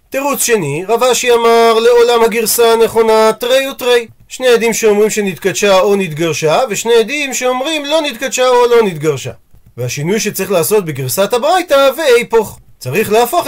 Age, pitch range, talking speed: 40-59, 190-235 Hz, 140 wpm